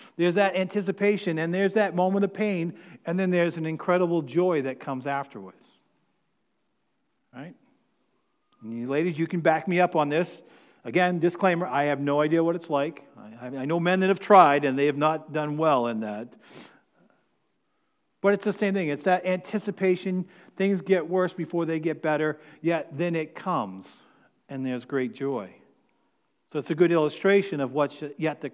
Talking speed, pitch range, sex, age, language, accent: 170 wpm, 150-185 Hz, male, 50-69, English, American